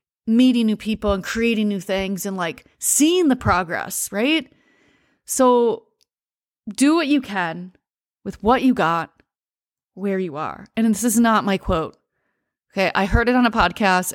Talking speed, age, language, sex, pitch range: 160 wpm, 30-49, English, female, 190-240 Hz